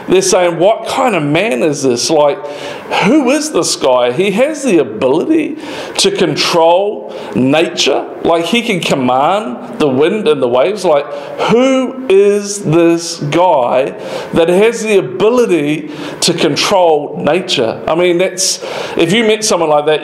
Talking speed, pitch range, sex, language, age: 150 wpm, 155-215 Hz, male, English, 40-59